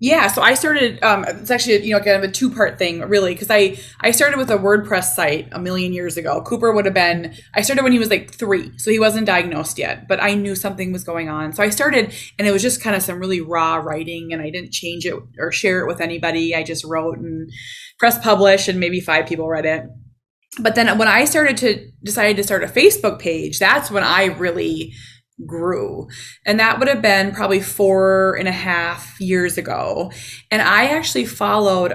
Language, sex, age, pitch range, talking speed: English, female, 20-39, 170-215 Hz, 220 wpm